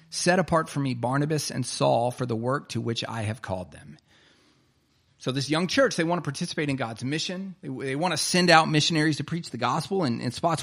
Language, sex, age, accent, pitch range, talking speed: English, male, 40-59, American, 125-170 Hz, 225 wpm